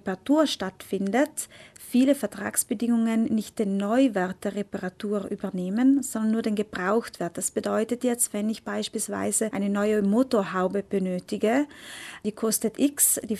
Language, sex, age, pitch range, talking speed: German, female, 30-49, 200-235 Hz, 120 wpm